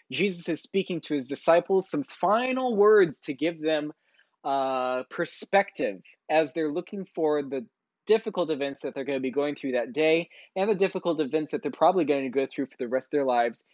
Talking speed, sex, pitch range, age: 205 wpm, male, 130-175 Hz, 20-39